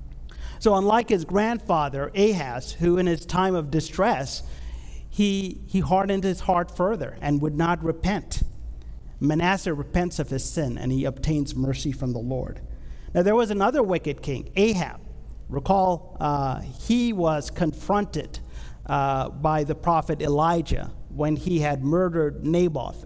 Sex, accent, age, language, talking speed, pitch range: male, American, 50-69, English, 145 wpm, 130-175 Hz